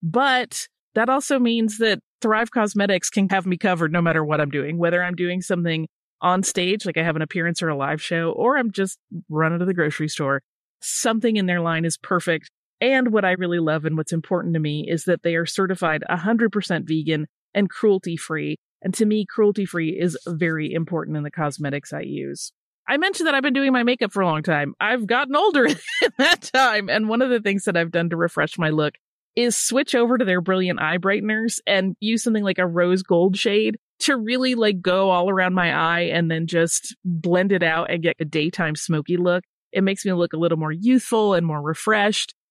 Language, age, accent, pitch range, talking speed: English, 30-49, American, 165-220 Hz, 215 wpm